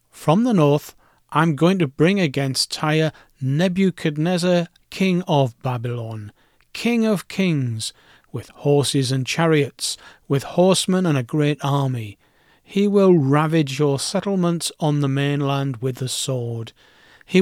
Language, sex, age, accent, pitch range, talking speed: English, male, 40-59, British, 135-175 Hz, 130 wpm